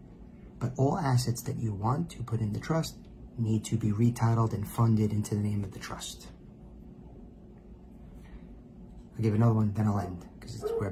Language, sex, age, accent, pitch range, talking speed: English, male, 40-59, American, 100-115 Hz, 175 wpm